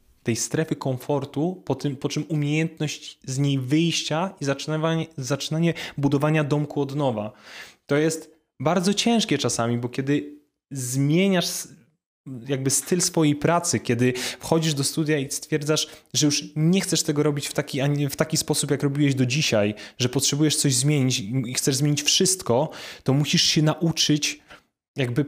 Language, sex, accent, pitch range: Polish, male, native, 140-165 Hz